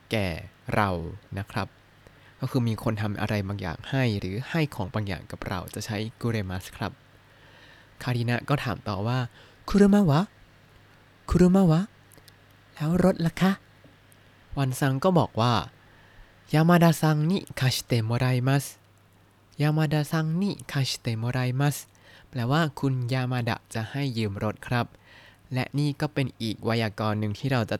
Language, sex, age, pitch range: Thai, male, 20-39, 100-135 Hz